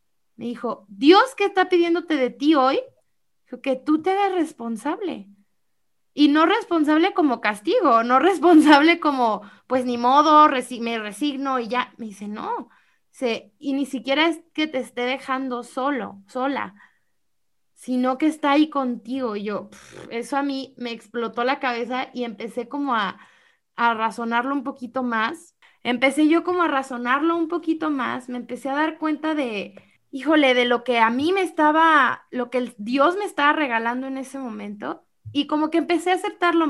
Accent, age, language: Mexican, 20-39, Spanish